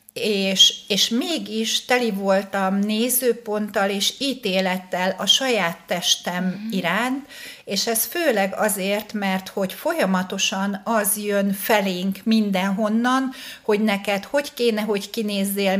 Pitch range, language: 195-225 Hz, Hungarian